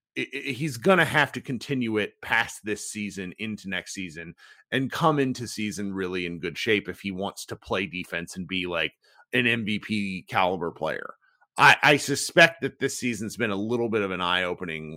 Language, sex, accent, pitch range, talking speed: English, male, American, 110-160 Hz, 195 wpm